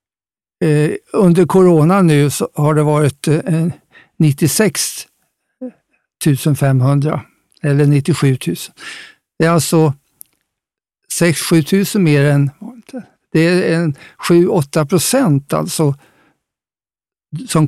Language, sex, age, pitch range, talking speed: Swedish, male, 60-79, 145-175 Hz, 90 wpm